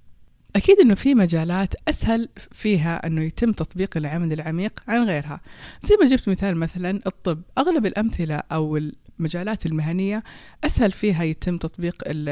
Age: 20-39